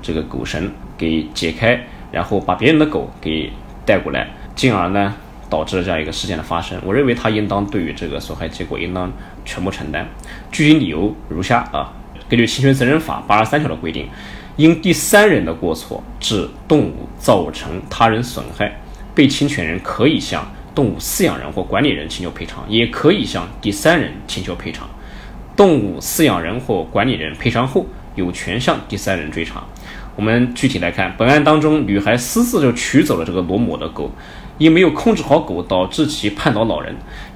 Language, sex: Chinese, male